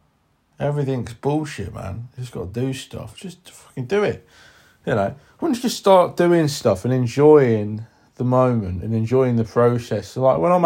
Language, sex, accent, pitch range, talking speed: English, male, British, 110-140 Hz, 180 wpm